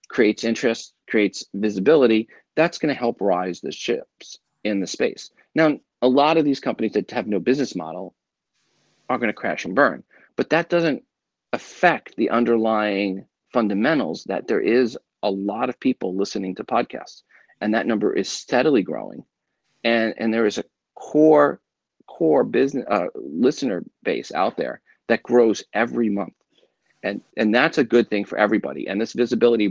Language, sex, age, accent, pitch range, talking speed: English, male, 40-59, American, 100-130 Hz, 165 wpm